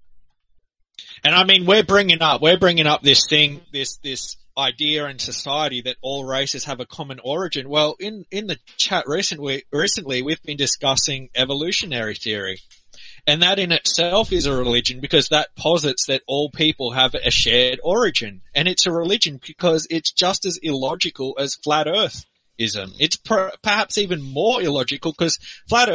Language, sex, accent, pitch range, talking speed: English, male, Australian, 130-170 Hz, 165 wpm